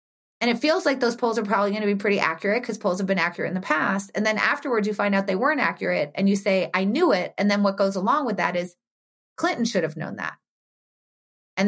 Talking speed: 255 wpm